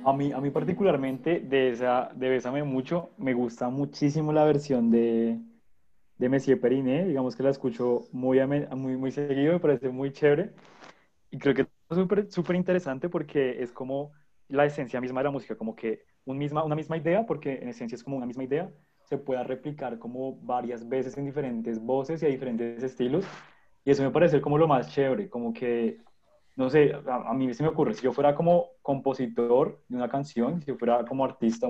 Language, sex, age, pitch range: Spanish, male, 20-39, 125-145 Hz